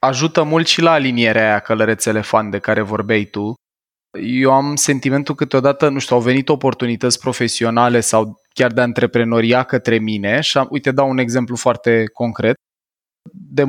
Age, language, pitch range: 20-39, Romanian, 115-145 Hz